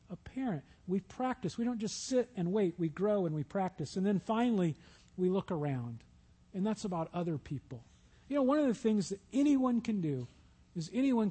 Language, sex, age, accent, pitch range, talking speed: English, male, 50-69, American, 175-235 Hz, 200 wpm